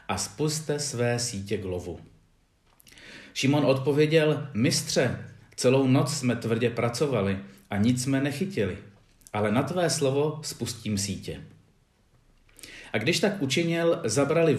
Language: Czech